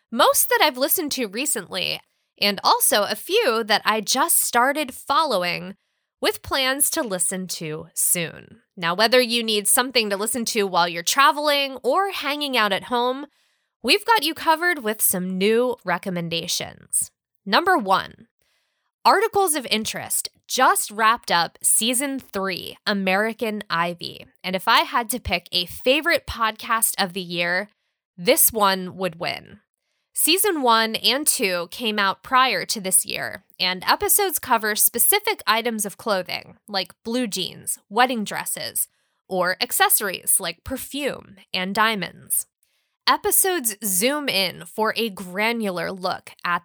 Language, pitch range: English, 190-265 Hz